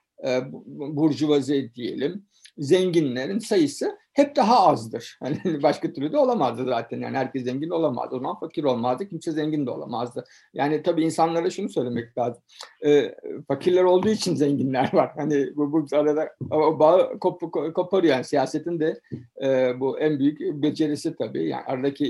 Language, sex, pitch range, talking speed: Turkish, male, 145-205 Hz, 160 wpm